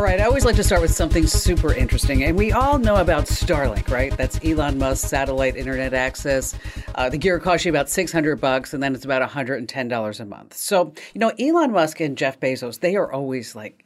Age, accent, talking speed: 40-59, American, 220 wpm